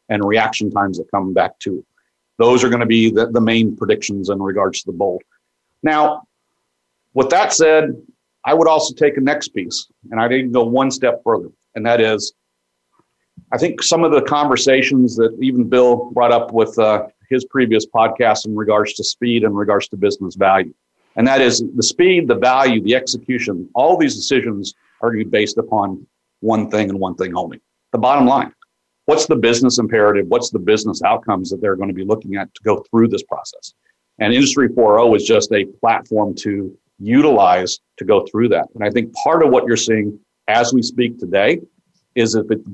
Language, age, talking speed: English, 50-69, 200 wpm